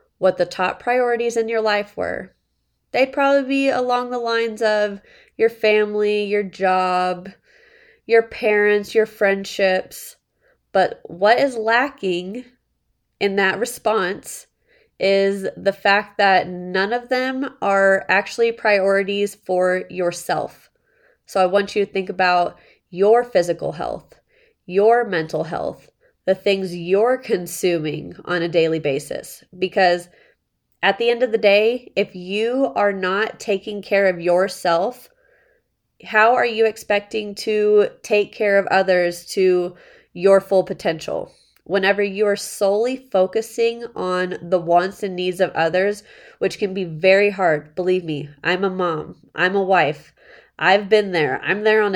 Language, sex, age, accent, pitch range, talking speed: English, female, 20-39, American, 185-230 Hz, 140 wpm